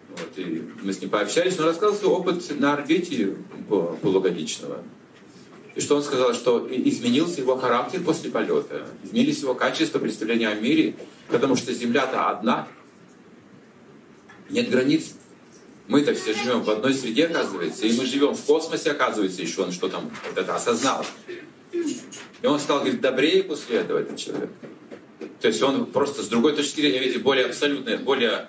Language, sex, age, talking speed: Russian, male, 40-59, 155 wpm